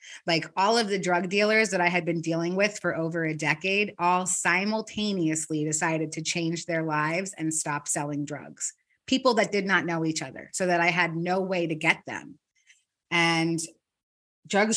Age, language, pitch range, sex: 30-49, English, 160-185 Hz, female